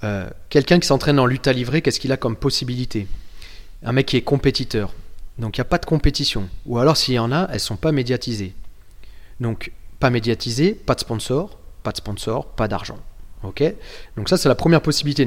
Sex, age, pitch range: male, 30-49, 105-140 Hz